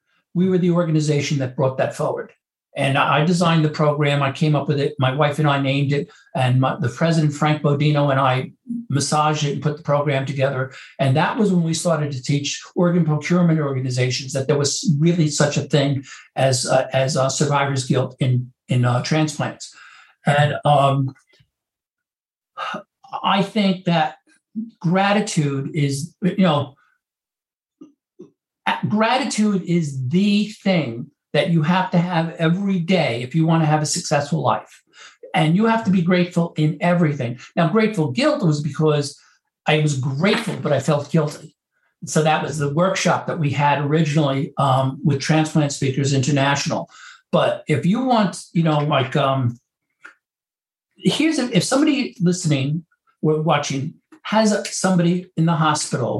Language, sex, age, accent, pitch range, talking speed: English, male, 60-79, American, 140-180 Hz, 160 wpm